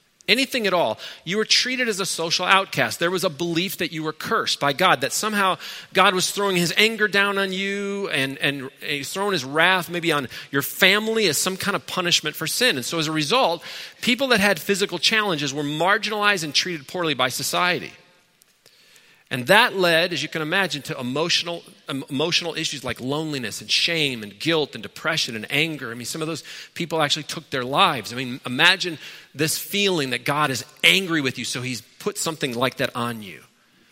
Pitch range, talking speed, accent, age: 145-185 Hz, 200 wpm, American, 40-59